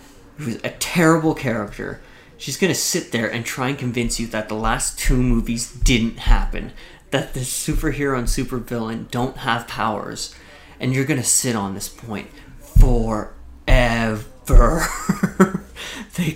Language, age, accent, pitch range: English, 30-49, American, 115-155 Hz